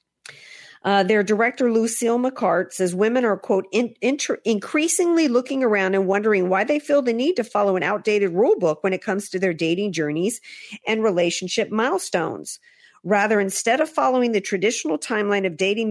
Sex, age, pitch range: female, 50-69, 175-220 Hz